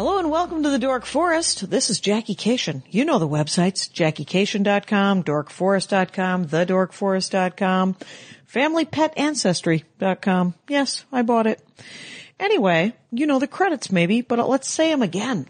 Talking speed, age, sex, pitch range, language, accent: 130 wpm, 50-69, female, 170-225 Hz, English, American